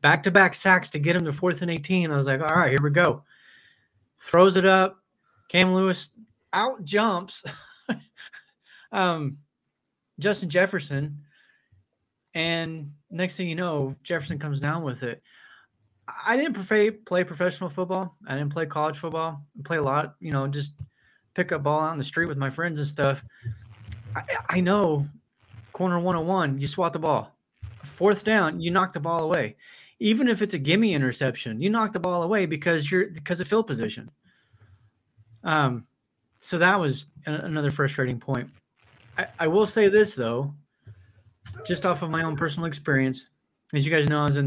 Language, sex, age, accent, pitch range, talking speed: English, male, 20-39, American, 135-180 Hz, 170 wpm